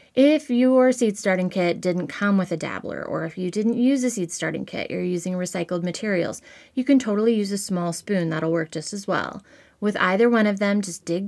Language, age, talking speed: English, 20-39, 225 wpm